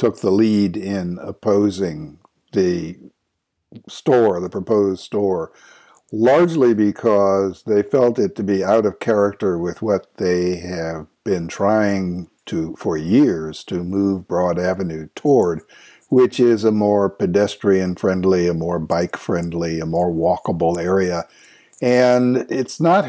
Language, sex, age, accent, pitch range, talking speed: English, male, 60-79, American, 90-115 Hz, 125 wpm